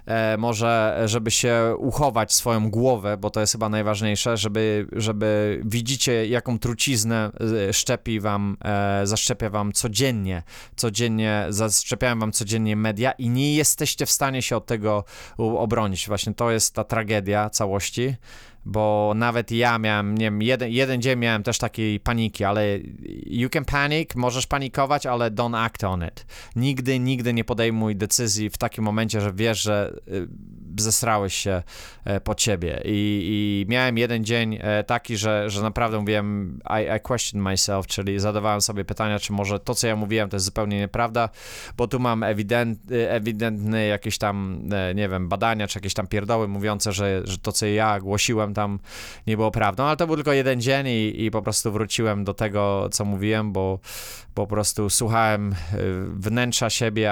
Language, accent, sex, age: Polish, native, male, 20-39